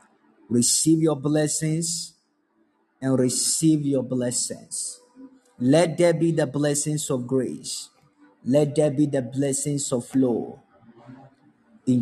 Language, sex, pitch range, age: Japanese, male, 130-175 Hz, 30-49